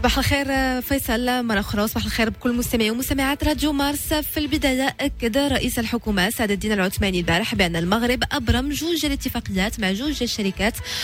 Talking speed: 160 wpm